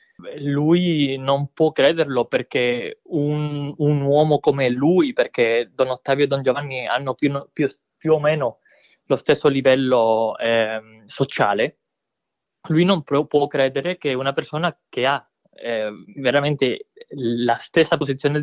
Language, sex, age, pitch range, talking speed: Italian, male, 20-39, 135-160 Hz, 130 wpm